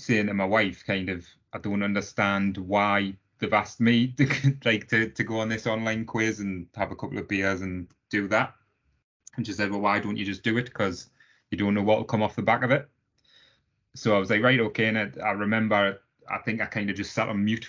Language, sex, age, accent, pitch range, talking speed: English, male, 20-39, British, 100-115 Hz, 245 wpm